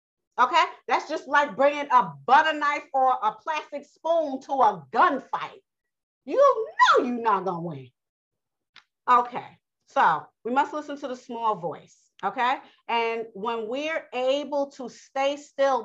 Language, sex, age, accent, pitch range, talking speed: English, female, 40-59, American, 220-285 Hz, 150 wpm